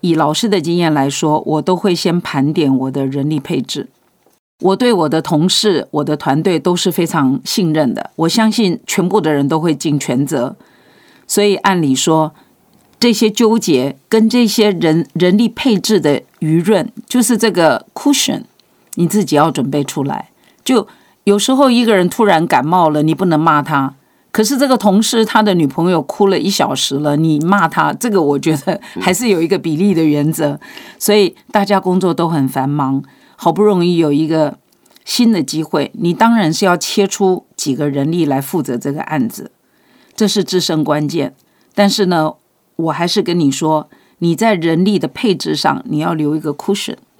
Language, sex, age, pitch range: Chinese, female, 50-69, 155-210 Hz